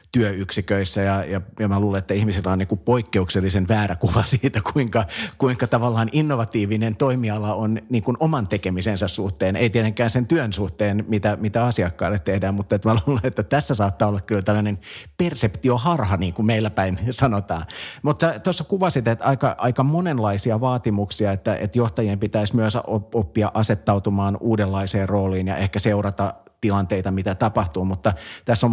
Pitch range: 100-115 Hz